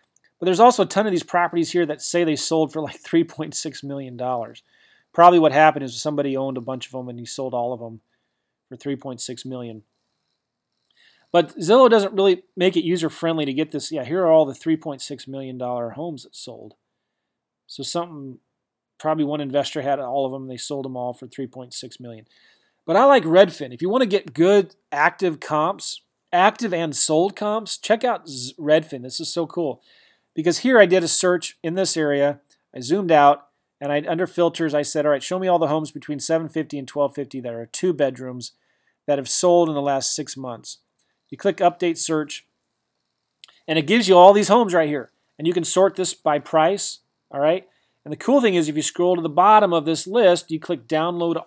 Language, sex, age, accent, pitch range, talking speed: English, male, 30-49, American, 140-175 Hz, 205 wpm